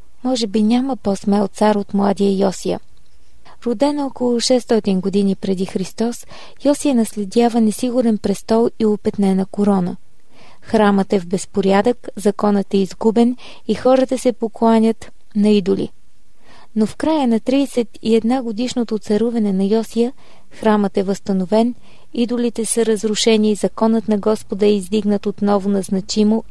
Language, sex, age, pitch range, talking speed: Bulgarian, female, 20-39, 205-235 Hz, 130 wpm